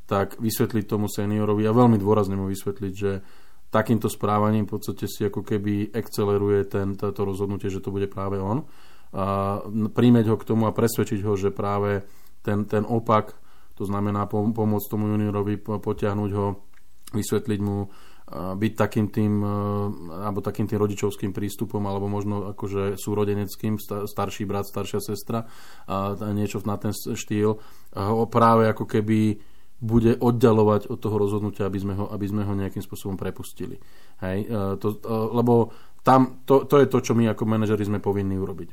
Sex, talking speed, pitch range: male, 160 wpm, 100-110 Hz